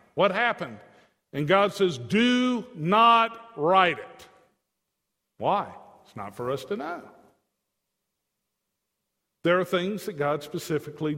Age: 50-69